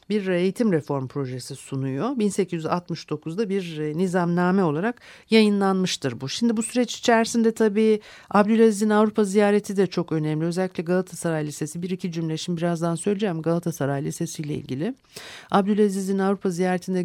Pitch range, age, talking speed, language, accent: 140-185 Hz, 60-79, 135 wpm, Turkish, native